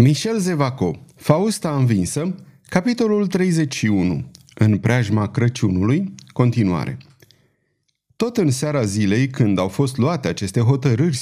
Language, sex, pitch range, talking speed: Romanian, male, 110-165 Hz, 105 wpm